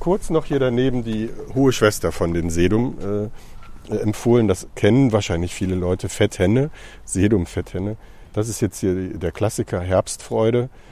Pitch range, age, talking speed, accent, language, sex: 90-110 Hz, 50-69, 145 wpm, German, German, male